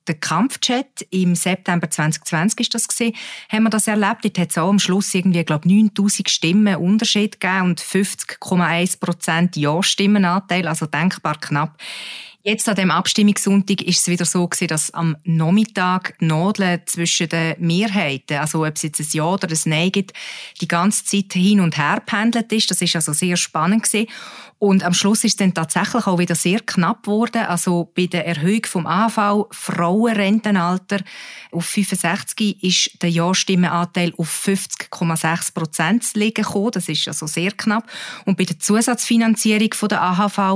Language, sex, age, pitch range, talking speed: German, female, 30-49, 175-210 Hz, 165 wpm